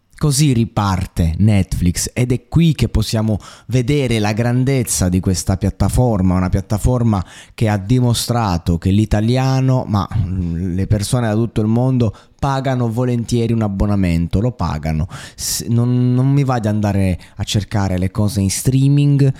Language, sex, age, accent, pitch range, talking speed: Italian, male, 20-39, native, 95-120 Hz, 140 wpm